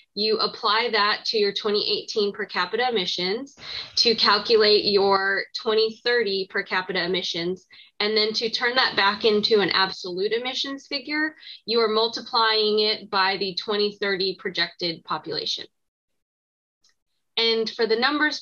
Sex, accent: female, American